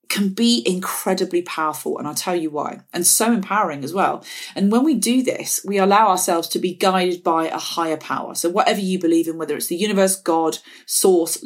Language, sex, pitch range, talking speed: English, female, 175-225 Hz, 210 wpm